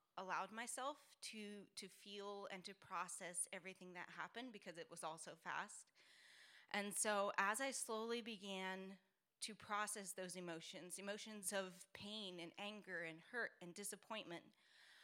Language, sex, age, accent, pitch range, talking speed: English, female, 10-29, American, 190-220 Hz, 145 wpm